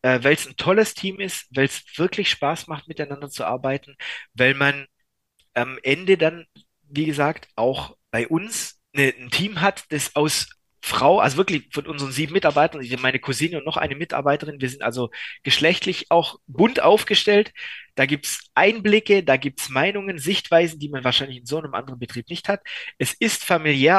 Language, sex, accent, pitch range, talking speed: German, male, German, 135-190 Hz, 180 wpm